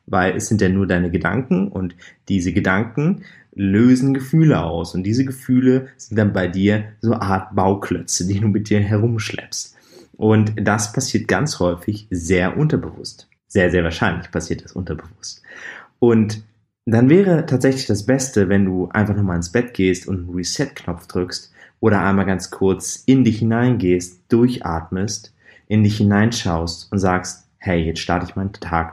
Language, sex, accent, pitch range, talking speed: German, male, German, 90-115 Hz, 160 wpm